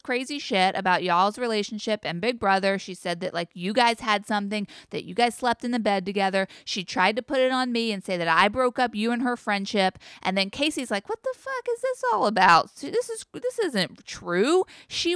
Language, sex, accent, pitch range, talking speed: English, female, American, 205-275 Hz, 230 wpm